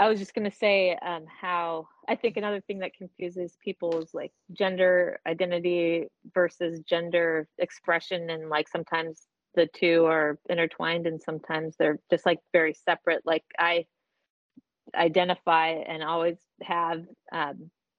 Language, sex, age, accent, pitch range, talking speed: English, female, 30-49, American, 150-180 Hz, 145 wpm